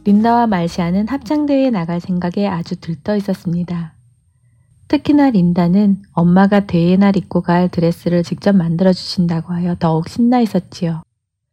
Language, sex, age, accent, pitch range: Korean, female, 20-39, native, 165-205 Hz